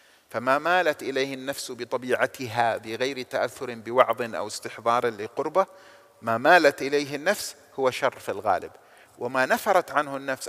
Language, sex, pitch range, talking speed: Arabic, male, 130-160 Hz, 130 wpm